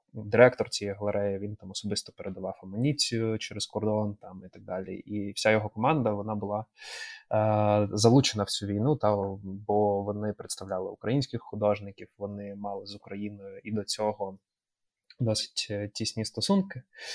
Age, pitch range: 20-39, 105-120 Hz